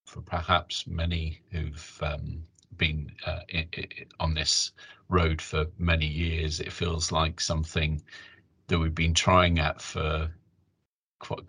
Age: 40-59